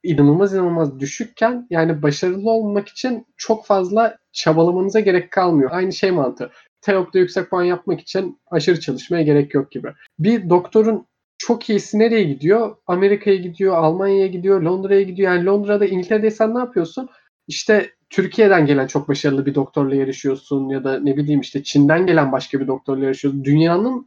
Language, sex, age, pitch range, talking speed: Turkish, male, 30-49, 145-205 Hz, 155 wpm